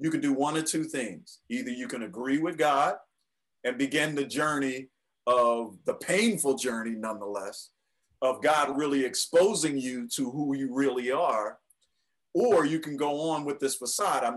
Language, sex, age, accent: English, male, 50-69, American